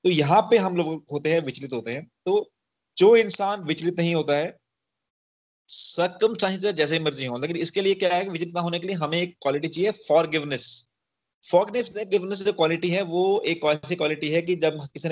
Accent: native